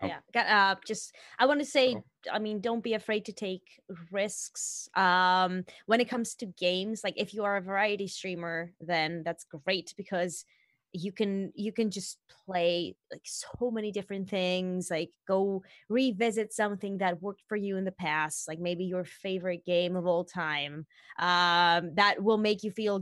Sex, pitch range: female, 180-225 Hz